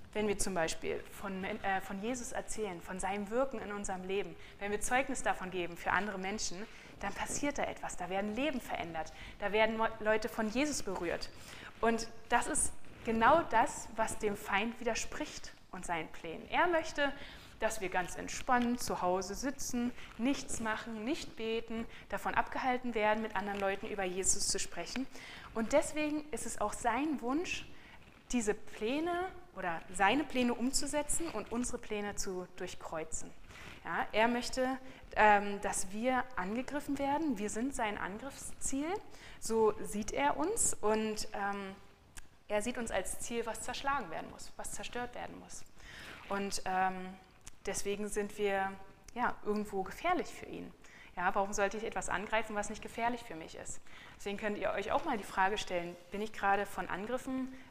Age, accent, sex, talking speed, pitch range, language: 20-39, German, female, 160 wpm, 195-250 Hz, German